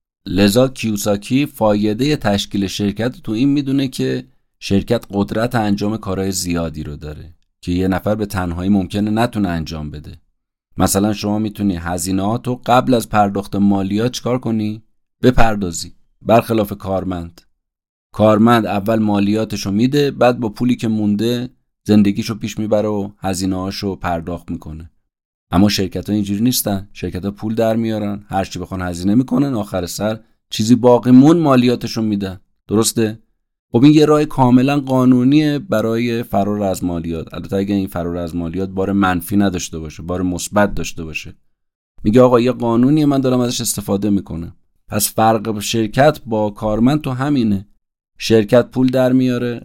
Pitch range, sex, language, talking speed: 95-115 Hz, male, Persian, 140 wpm